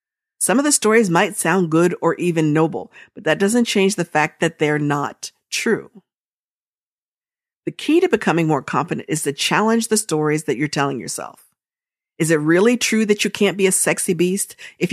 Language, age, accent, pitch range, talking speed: English, 50-69, American, 155-215 Hz, 190 wpm